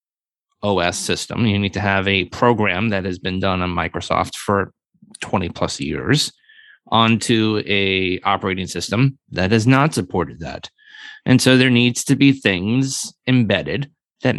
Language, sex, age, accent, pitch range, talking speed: English, male, 30-49, American, 100-130 Hz, 150 wpm